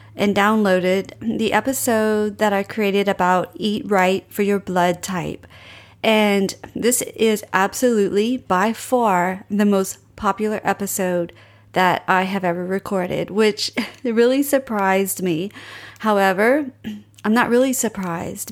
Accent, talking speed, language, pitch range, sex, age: American, 125 wpm, English, 185-220 Hz, female, 40-59